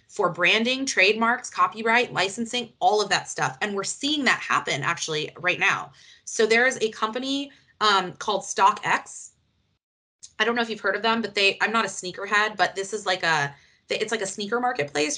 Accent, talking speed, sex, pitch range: American, 195 wpm, female, 175-230 Hz